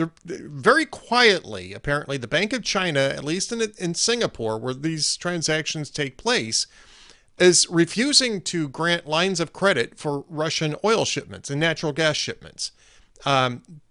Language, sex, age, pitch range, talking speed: English, male, 40-59, 130-175 Hz, 140 wpm